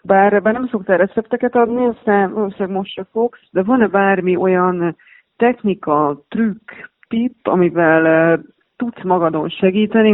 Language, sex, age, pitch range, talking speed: Hungarian, female, 30-49, 170-205 Hz, 135 wpm